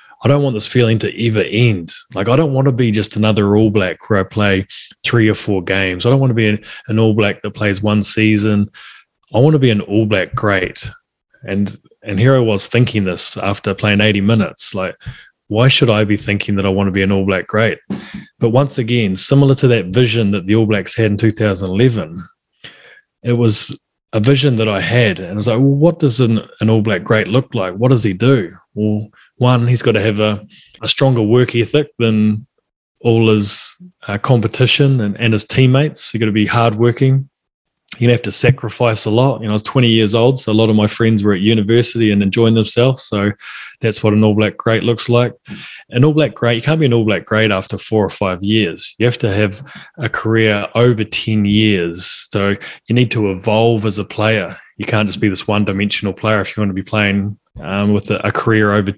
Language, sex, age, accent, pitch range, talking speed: English, male, 20-39, New Zealand, 105-120 Hz, 220 wpm